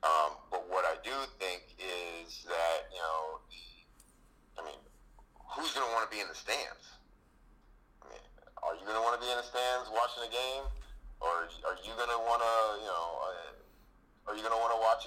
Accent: American